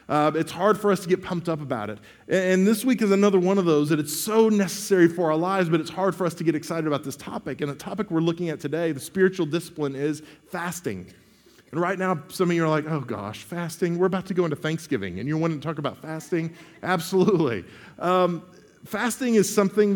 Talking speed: 235 wpm